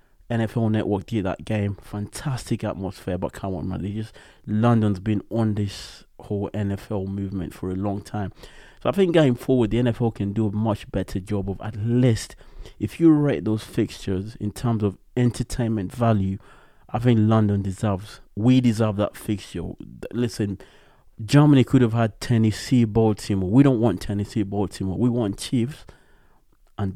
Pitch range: 100-120 Hz